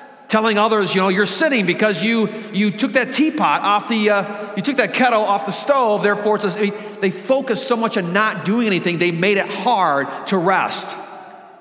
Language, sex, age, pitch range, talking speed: English, male, 50-69, 155-225 Hz, 210 wpm